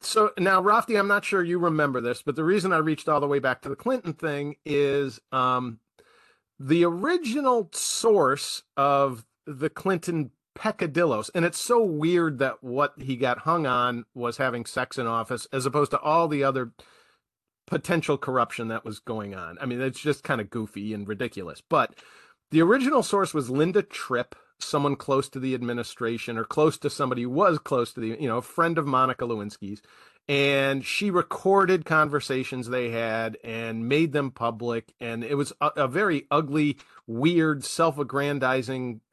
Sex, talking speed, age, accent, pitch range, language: male, 175 wpm, 40-59, American, 125-170 Hz, English